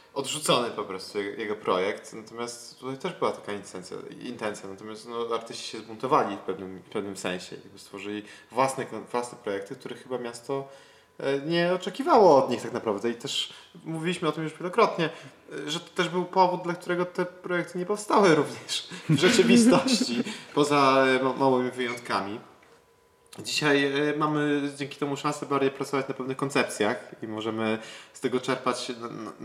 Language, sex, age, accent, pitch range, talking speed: Polish, male, 20-39, native, 115-155 Hz, 160 wpm